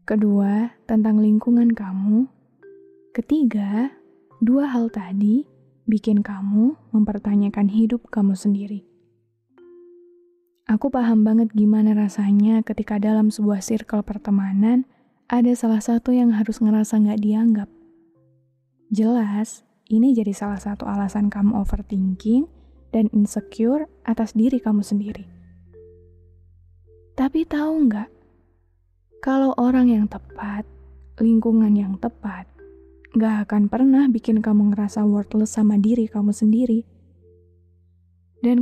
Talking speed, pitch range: 105 wpm, 200-235 Hz